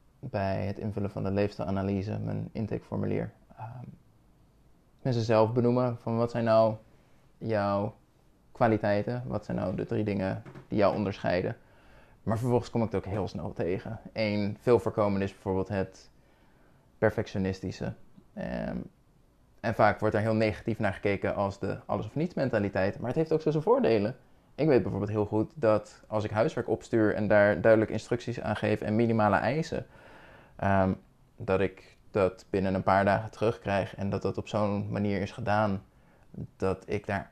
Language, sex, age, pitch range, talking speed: Dutch, male, 20-39, 100-115 Hz, 165 wpm